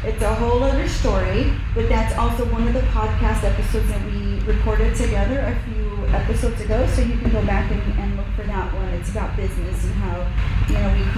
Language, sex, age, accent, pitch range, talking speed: English, female, 30-49, American, 95-110 Hz, 215 wpm